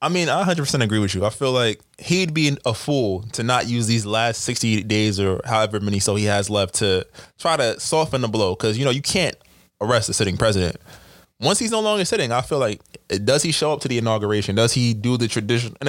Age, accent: 20-39, American